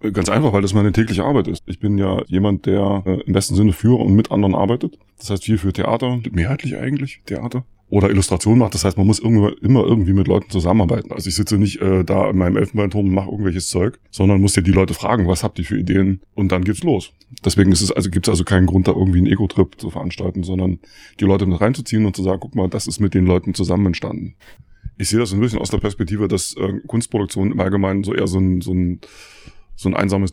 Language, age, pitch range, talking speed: German, 20-39, 95-105 Hz, 245 wpm